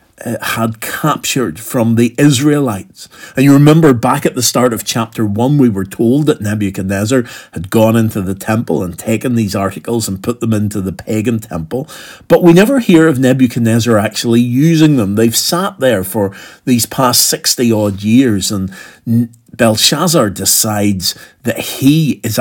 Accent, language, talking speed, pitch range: British, English, 160 wpm, 105-145 Hz